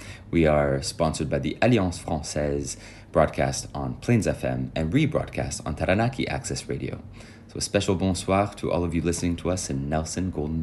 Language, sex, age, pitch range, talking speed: French, male, 30-49, 80-110 Hz, 175 wpm